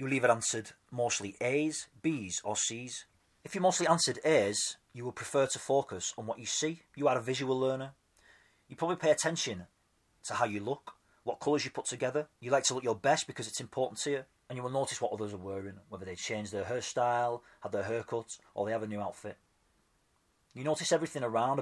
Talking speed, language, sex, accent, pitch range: 220 wpm, English, male, British, 105-135 Hz